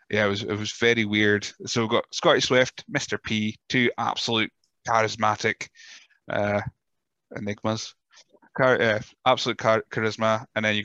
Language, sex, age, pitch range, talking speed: English, male, 20-39, 105-120 Hz, 150 wpm